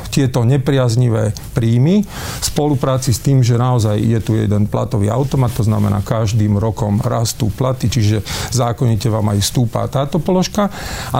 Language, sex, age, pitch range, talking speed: Slovak, male, 40-59, 110-130 Hz, 145 wpm